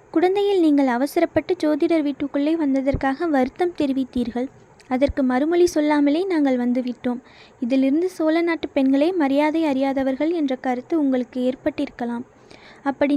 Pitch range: 270-330 Hz